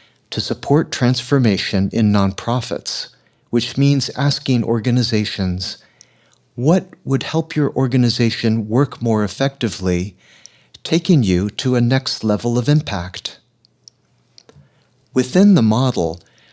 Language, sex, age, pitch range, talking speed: English, male, 60-79, 105-135 Hz, 100 wpm